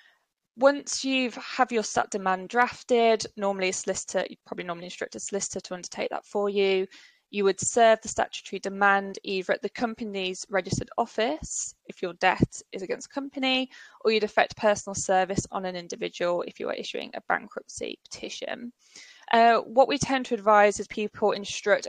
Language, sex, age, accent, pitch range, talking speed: English, female, 20-39, British, 190-235 Hz, 175 wpm